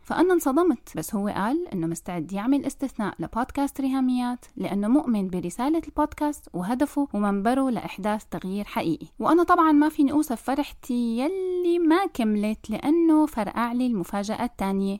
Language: Arabic